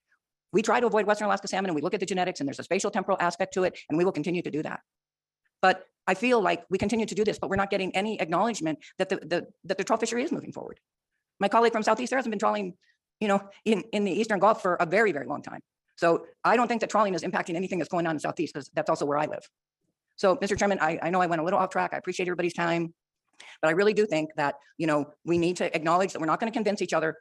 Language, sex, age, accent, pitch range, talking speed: English, female, 50-69, American, 165-210 Hz, 285 wpm